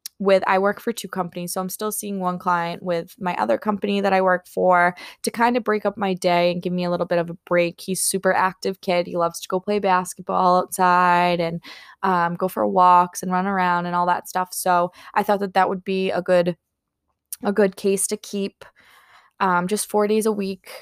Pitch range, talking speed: 175-200 Hz, 230 wpm